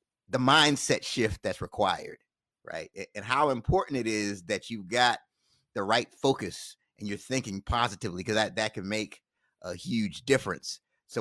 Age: 30-49